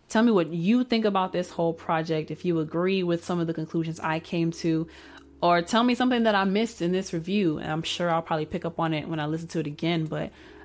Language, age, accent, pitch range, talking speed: English, 20-39, American, 160-195 Hz, 260 wpm